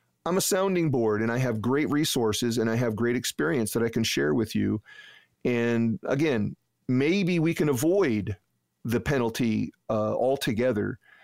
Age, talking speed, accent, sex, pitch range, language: 40-59, 160 wpm, American, male, 110-140 Hz, English